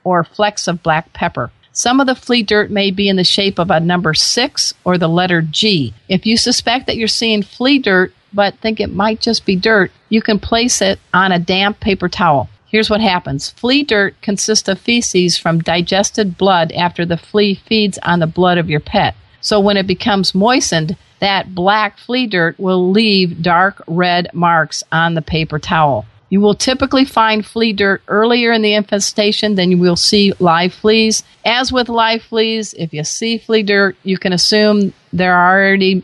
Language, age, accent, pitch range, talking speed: English, 50-69, American, 170-220 Hz, 195 wpm